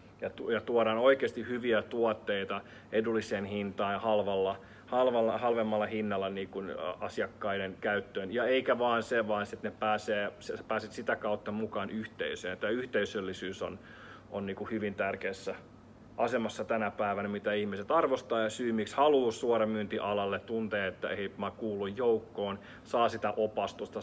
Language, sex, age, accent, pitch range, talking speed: Finnish, male, 30-49, native, 105-115 Hz, 125 wpm